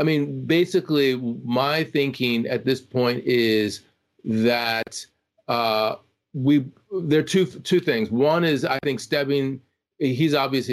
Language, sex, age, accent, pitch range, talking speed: English, male, 40-59, American, 120-145 Hz, 135 wpm